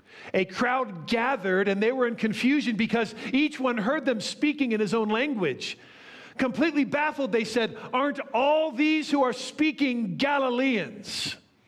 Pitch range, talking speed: 180-235 Hz, 150 wpm